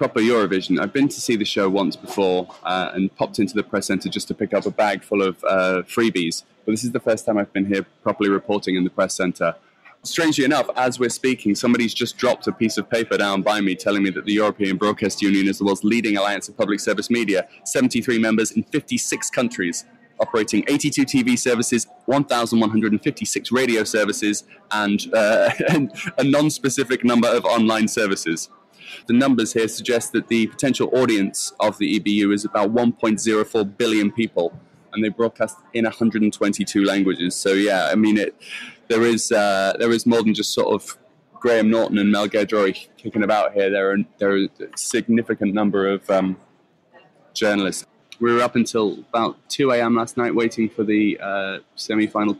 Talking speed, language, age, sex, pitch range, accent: 185 wpm, English, 20-39, male, 100-115 Hz, British